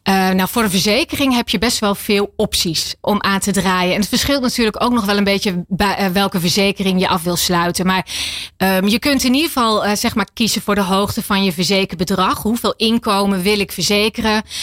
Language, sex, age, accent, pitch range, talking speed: Dutch, female, 30-49, Dutch, 195-255 Hz, 225 wpm